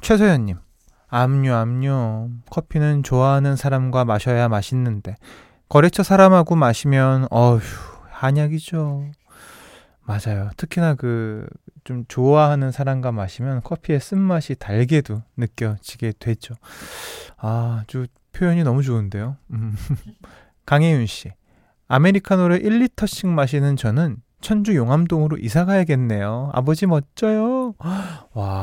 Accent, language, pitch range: native, Korean, 115-160 Hz